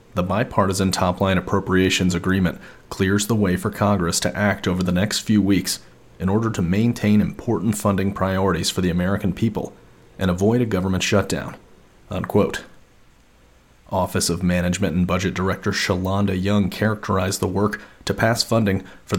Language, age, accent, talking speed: English, 30-49, American, 155 wpm